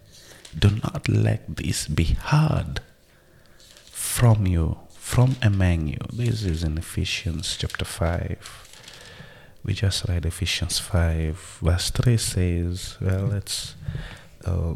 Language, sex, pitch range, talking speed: English, male, 85-110 Hz, 115 wpm